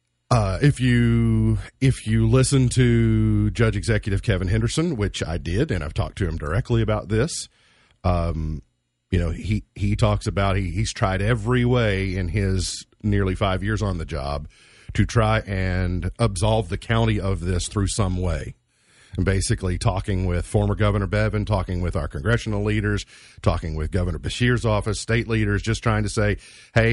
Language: English